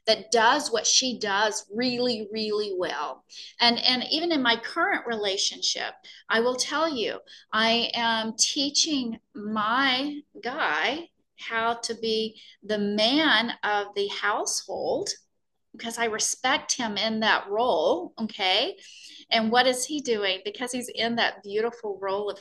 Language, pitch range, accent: English, 215-275 Hz, American